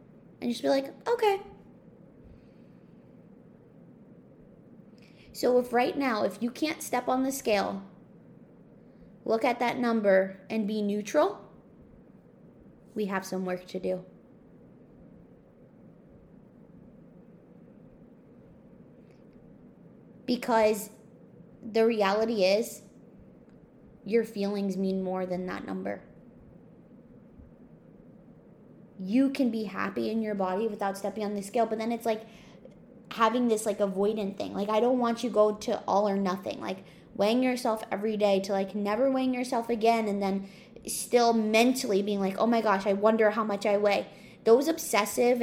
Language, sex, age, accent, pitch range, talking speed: English, female, 20-39, American, 195-235 Hz, 130 wpm